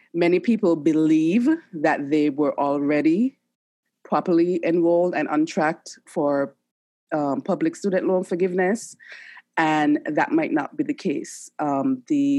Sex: female